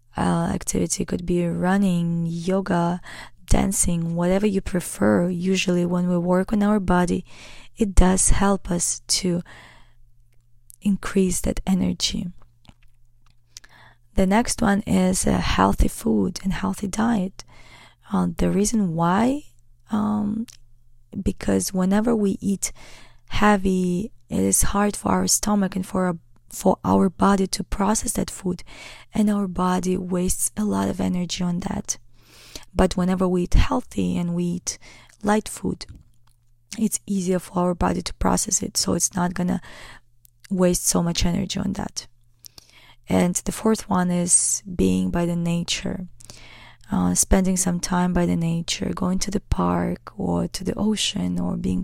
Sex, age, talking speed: female, 20-39, 145 wpm